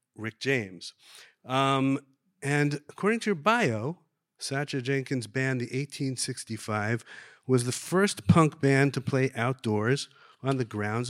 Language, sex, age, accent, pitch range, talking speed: English, male, 50-69, American, 120-145 Hz, 130 wpm